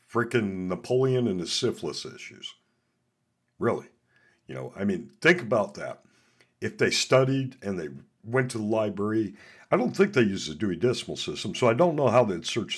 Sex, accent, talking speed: male, American, 185 wpm